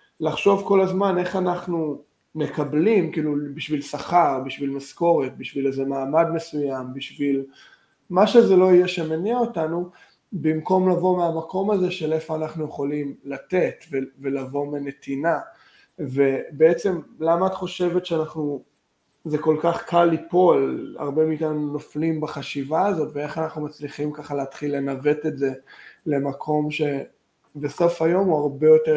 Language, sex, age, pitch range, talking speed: Hebrew, male, 20-39, 150-180 Hz, 135 wpm